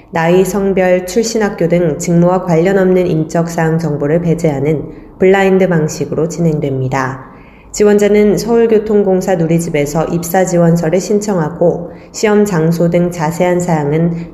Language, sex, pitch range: Korean, female, 165-205 Hz